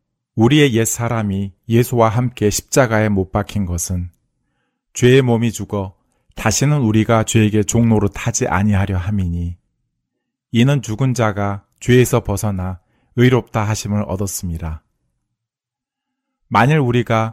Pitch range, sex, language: 95-120 Hz, male, Korean